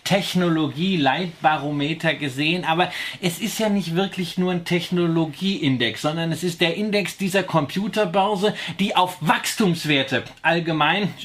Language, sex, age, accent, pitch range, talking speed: German, male, 30-49, German, 155-190 Hz, 115 wpm